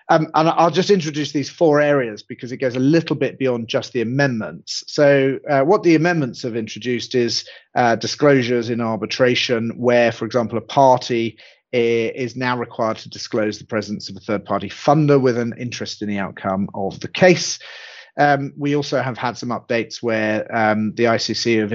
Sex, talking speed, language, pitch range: male, 190 wpm, English, 115-140 Hz